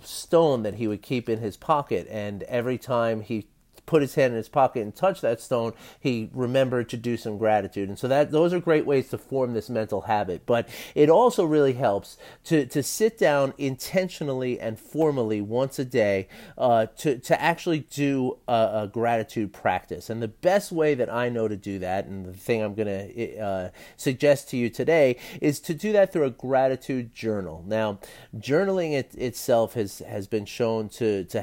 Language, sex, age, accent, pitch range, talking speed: English, male, 30-49, American, 105-135 Hz, 195 wpm